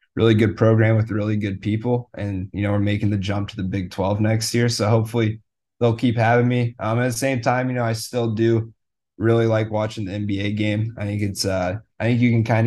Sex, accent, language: male, American, English